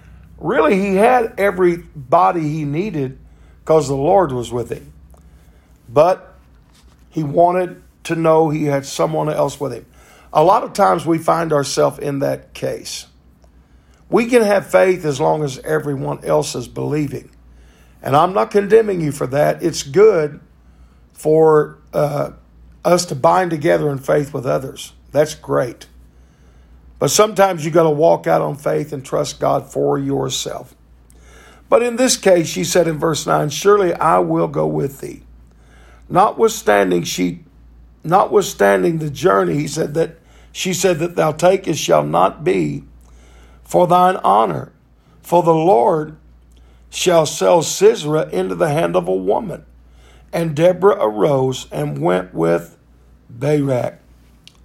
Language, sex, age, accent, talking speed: English, male, 50-69, American, 145 wpm